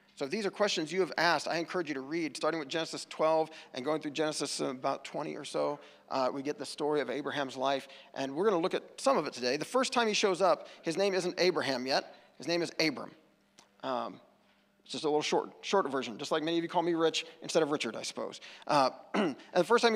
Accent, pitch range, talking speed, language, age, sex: American, 150-195 Hz, 250 wpm, English, 40-59, male